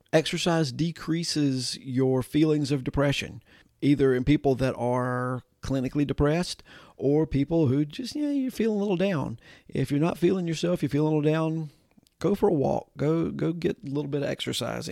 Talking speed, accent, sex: 190 wpm, American, male